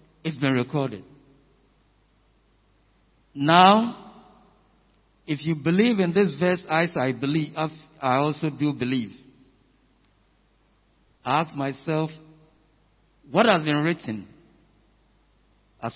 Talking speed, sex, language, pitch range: 85 wpm, male, English, 130-195 Hz